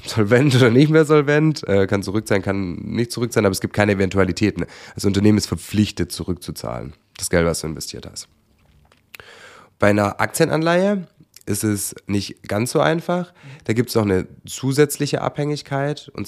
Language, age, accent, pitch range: German, 30-49, German, 95-135 Hz